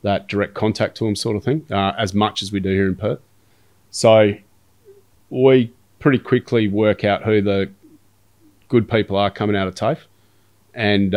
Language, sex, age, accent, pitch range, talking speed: English, male, 30-49, Australian, 100-110 Hz, 175 wpm